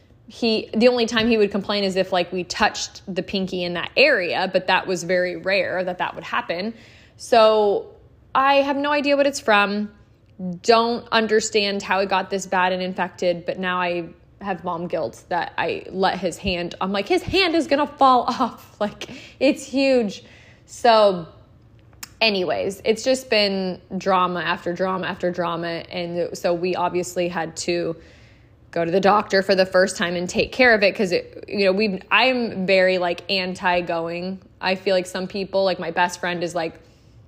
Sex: female